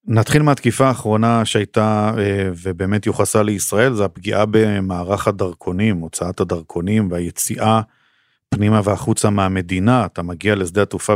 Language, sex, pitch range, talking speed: Hebrew, male, 95-115 Hz, 115 wpm